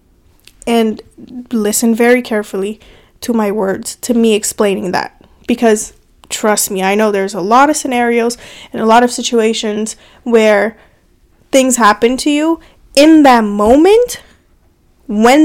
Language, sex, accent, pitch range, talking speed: English, female, American, 215-270 Hz, 135 wpm